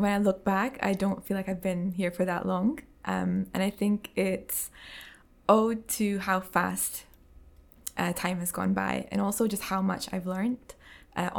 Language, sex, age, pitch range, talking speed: English, female, 20-39, 175-200 Hz, 190 wpm